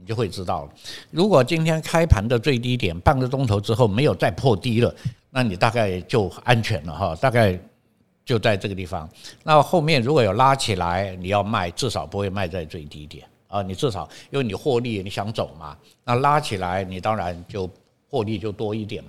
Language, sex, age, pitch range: Chinese, male, 60-79, 95-125 Hz